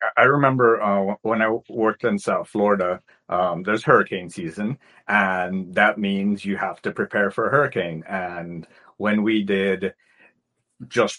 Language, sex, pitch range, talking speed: English, male, 100-125 Hz, 150 wpm